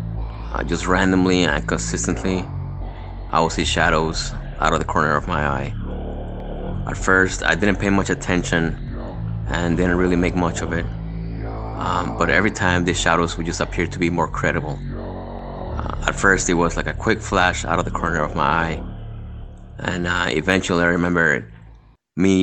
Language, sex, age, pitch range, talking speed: English, male, 30-49, 80-90 Hz, 175 wpm